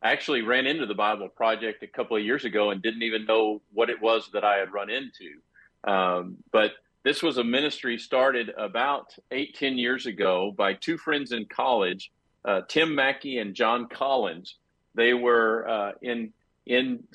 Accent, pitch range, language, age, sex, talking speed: American, 110-130 Hz, English, 50-69, male, 180 wpm